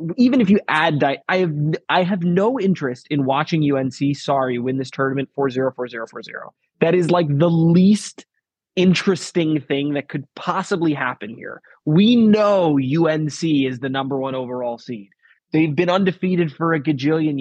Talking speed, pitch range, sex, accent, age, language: 160 wpm, 140-180 Hz, male, American, 20-39, English